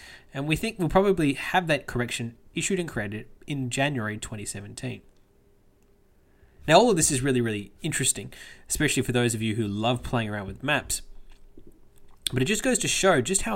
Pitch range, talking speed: 110-140 Hz, 180 wpm